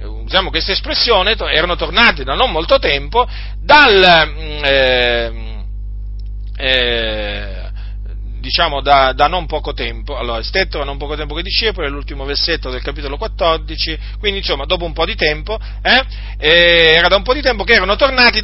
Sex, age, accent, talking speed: male, 40-59, native, 165 wpm